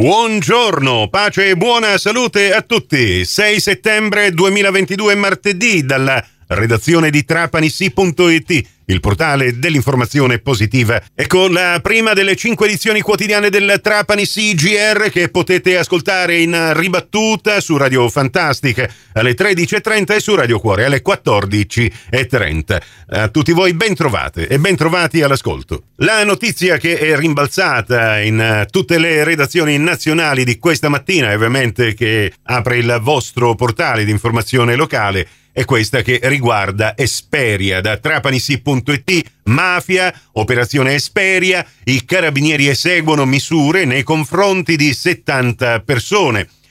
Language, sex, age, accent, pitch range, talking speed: Italian, male, 40-59, native, 120-175 Hz, 120 wpm